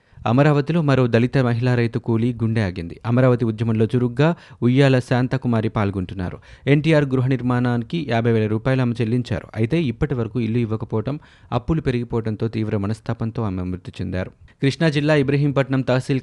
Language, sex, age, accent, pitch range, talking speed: Telugu, male, 30-49, native, 105-130 Hz, 140 wpm